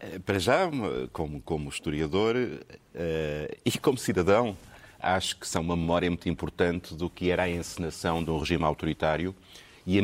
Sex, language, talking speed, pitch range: male, Portuguese, 155 wpm, 80-95 Hz